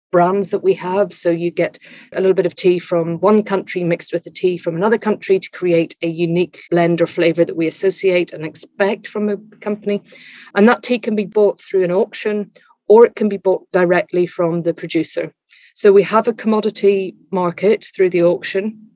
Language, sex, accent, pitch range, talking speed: English, female, British, 165-195 Hz, 205 wpm